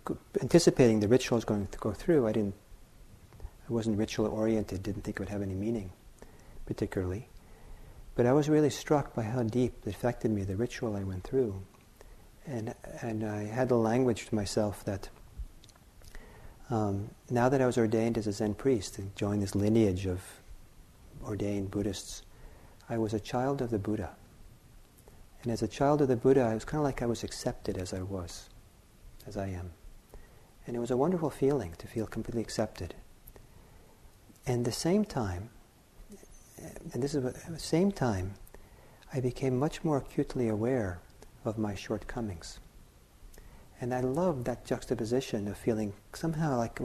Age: 50-69